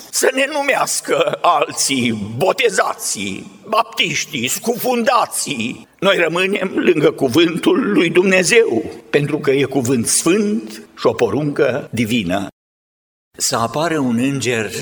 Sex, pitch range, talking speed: male, 105-155 Hz, 105 wpm